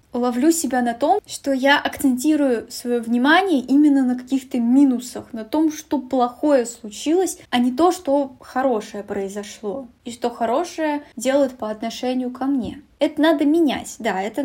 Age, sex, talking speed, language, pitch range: 10-29, female, 155 wpm, Russian, 240-295 Hz